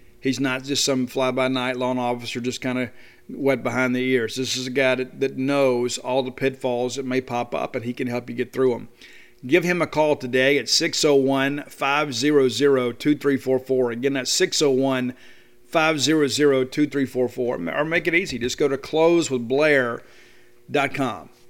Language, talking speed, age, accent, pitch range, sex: English, 150 wpm, 40-59, American, 120-145 Hz, male